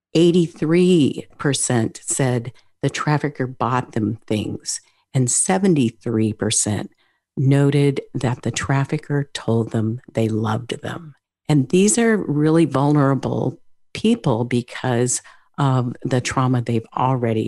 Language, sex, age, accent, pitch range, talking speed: English, female, 50-69, American, 115-150 Hz, 110 wpm